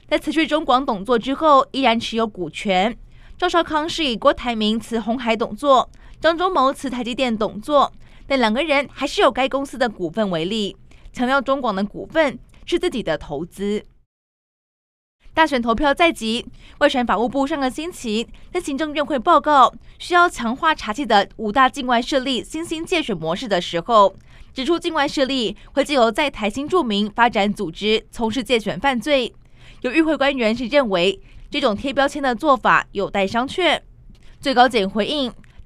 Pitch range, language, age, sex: 215-280 Hz, Chinese, 20-39, female